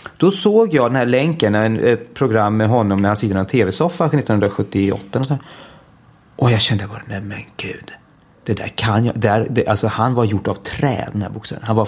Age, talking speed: 30-49, 220 wpm